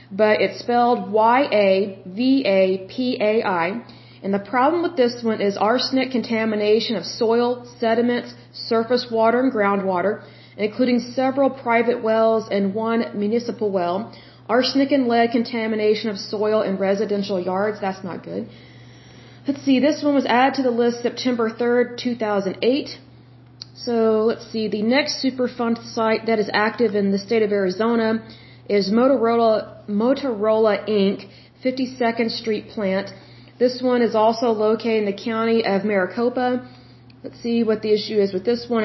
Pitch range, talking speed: 205-240 Hz, 145 wpm